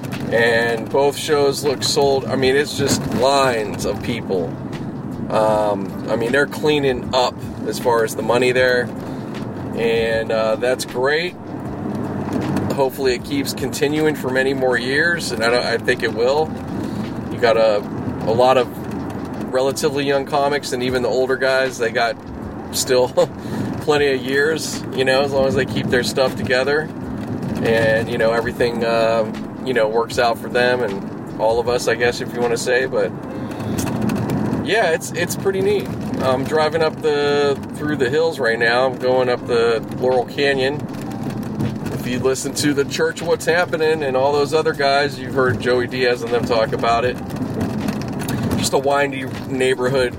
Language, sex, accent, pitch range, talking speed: English, male, American, 120-140 Hz, 170 wpm